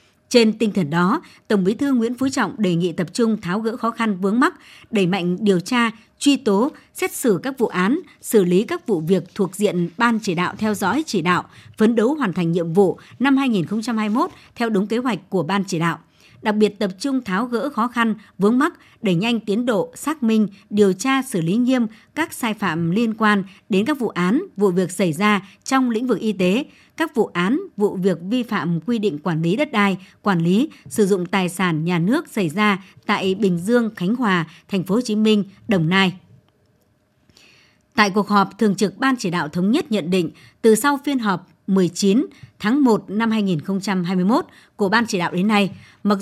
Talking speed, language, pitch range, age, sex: 210 wpm, Vietnamese, 185-235 Hz, 60-79, male